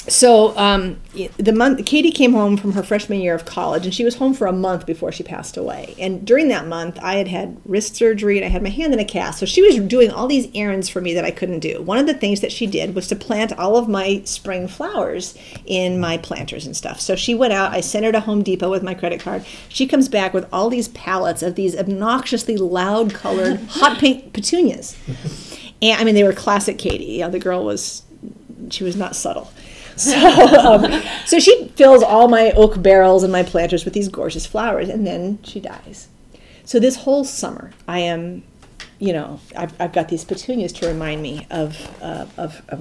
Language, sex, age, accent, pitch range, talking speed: English, female, 40-59, American, 180-235 Hz, 225 wpm